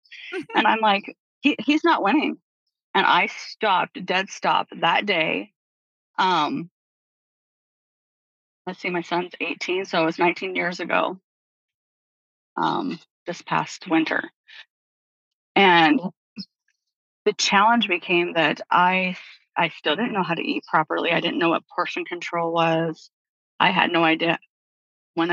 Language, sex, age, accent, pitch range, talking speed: English, female, 30-49, American, 170-230 Hz, 135 wpm